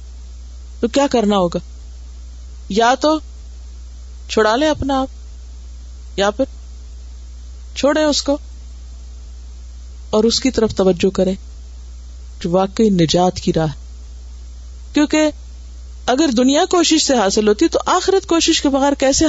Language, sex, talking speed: Urdu, female, 120 wpm